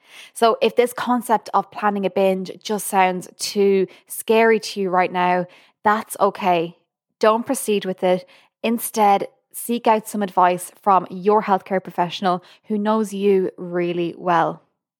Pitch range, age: 185-220 Hz, 20-39